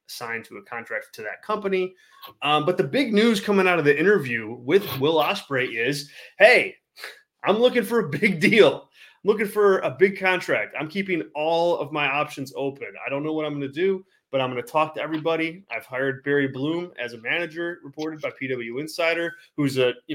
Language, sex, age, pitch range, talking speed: English, male, 20-39, 130-175 Hz, 210 wpm